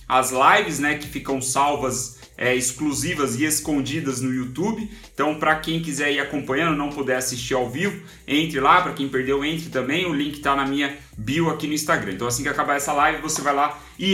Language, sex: Portuguese, male